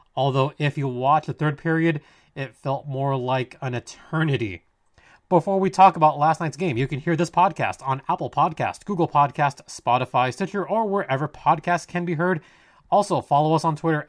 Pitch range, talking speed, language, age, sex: 135-180 Hz, 185 wpm, English, 20-39, male